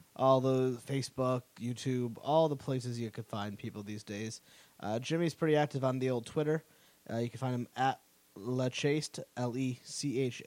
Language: English